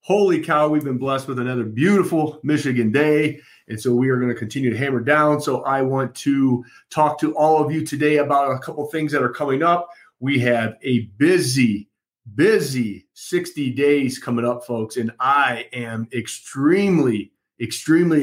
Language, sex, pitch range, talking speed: English, male, 130-160 Hz, 175 wpm